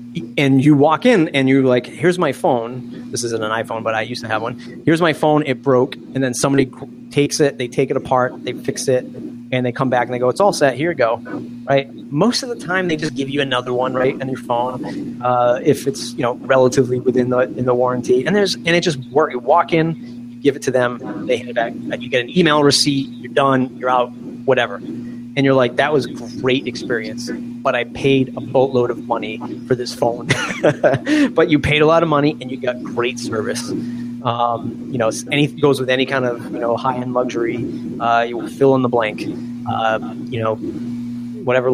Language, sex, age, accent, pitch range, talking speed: English, male, 30-49, American, 120-135 Hz, 225 wpm